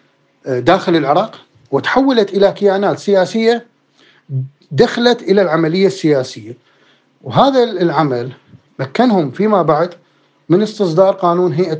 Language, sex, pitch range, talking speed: Arabic, male, 145-210 Hz, 95 wpm